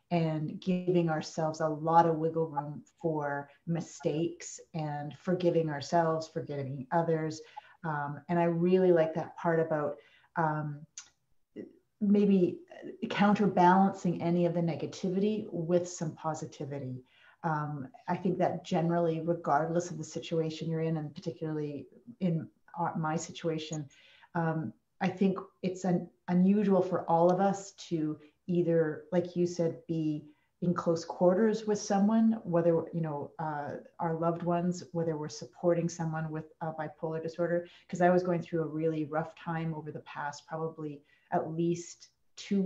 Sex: female